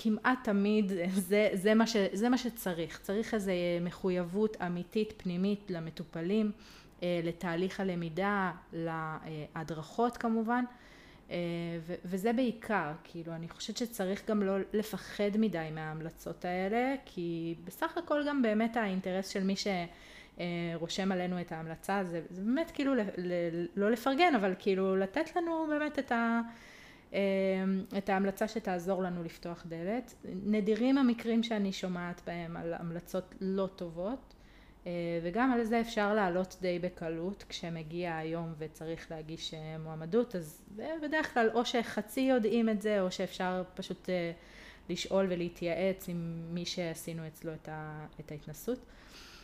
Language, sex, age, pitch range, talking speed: Hebrew, female, 30-49, 170-220 Hz, 130 wpm